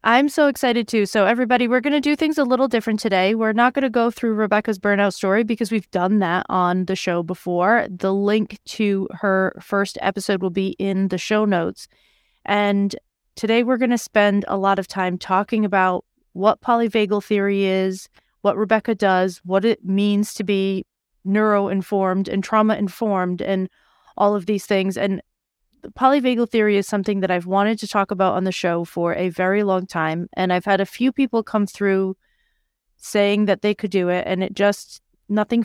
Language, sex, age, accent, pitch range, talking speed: English, female, 30-49, American, 190-225 Hz, 190 wpm